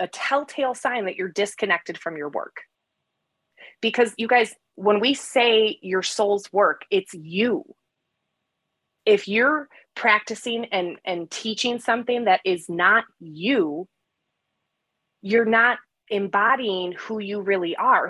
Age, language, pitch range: 30-49, English, 190-245 Hz